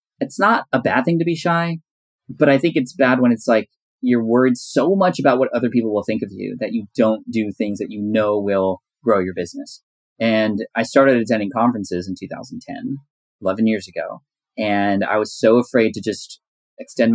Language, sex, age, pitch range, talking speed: English, male, 20-39, 100-125 Hz, 205 wpm